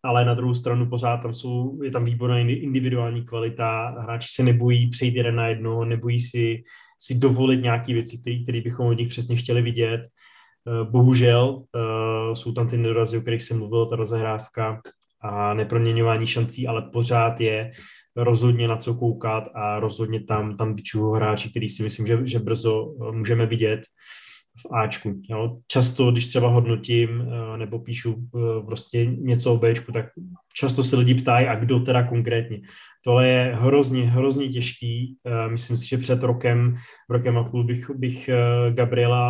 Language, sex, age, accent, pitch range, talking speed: Czech, male, 20-39, native, 115-125 Hz, 165 wpm